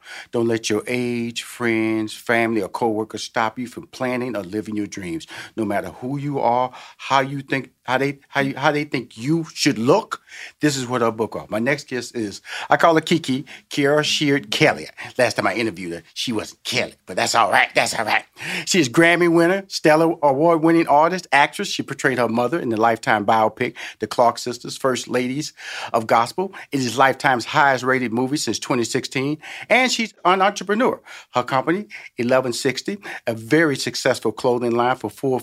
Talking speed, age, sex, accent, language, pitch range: 185 wpm, 40-59, male, American, English, 120-155 Hz